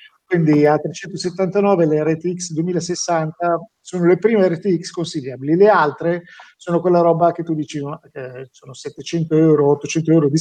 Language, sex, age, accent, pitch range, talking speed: Italian, male, 50-69, native, 145-175 Hz, 145 wpm